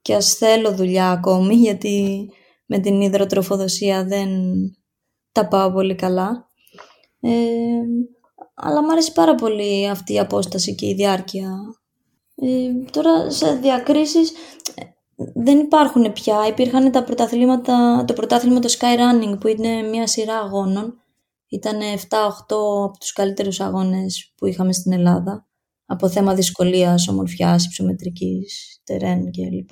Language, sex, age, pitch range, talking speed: Greek, female, 20-39, 190-250 Hz, 120 wpm